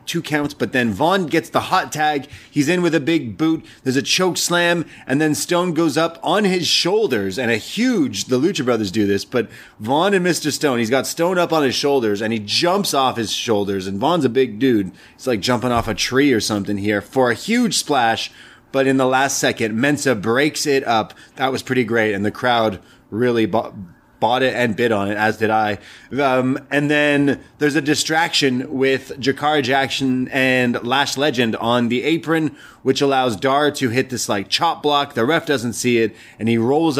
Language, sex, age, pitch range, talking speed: English, male, 30-49, 105-145 Hz, 210 wpm